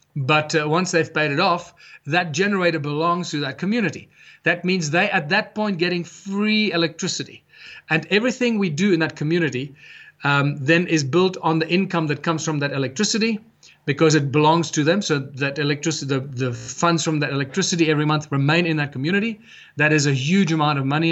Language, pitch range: English, 145-175 Hz